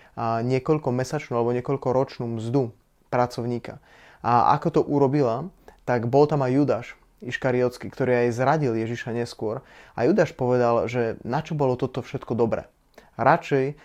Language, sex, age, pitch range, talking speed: Slovak, male, 20-39, 120-135 Hz, 145 wpm